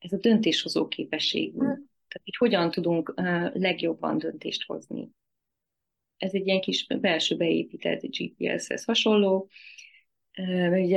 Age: 30-49